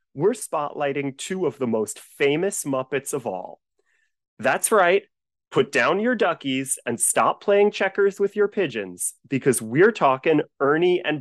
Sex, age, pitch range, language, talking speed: male, 30-49, 130-210 Hz, English, 150 wpm